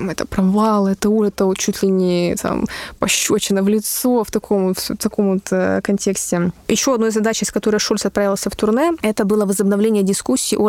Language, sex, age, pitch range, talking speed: Russian, female, 20-39, 195-220 Hz, 185 wpm